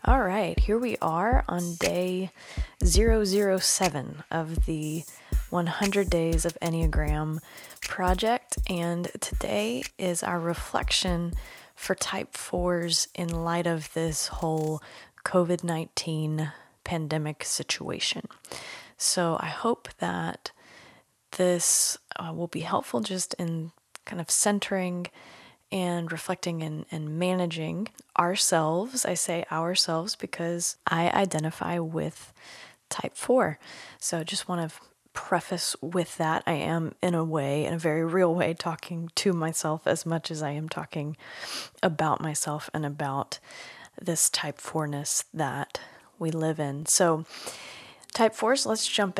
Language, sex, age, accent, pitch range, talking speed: English, female, 20-39, American, 155-185 Hz, 125 wpm